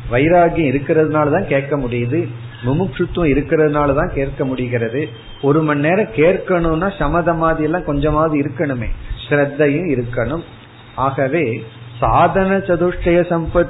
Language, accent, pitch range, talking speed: Tamil, native, 120-170 Hz, 65 wpm